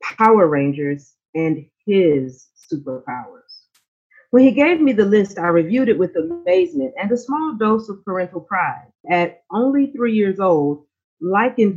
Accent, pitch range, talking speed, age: American, 155-215 Hz, 150 wpm, 40-59